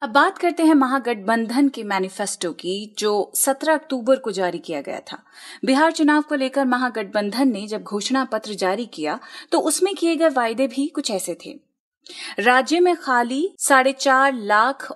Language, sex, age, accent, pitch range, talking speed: Hindi, female, 30-49, native, 215-285 Hz, 170 wpm